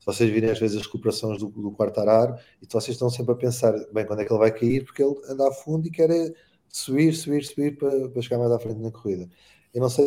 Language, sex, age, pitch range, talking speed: English, male, 20-39, 100-120 Hz, 260 wpm